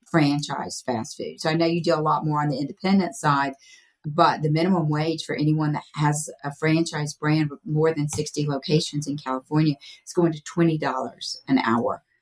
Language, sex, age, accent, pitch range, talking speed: English, female, 40-59, American, 135-165 Hz, 190 wpm